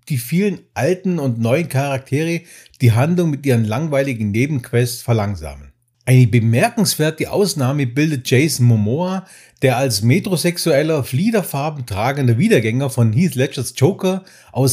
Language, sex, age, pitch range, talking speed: German, male, 50-69, 115-155 Hz, 120 wpm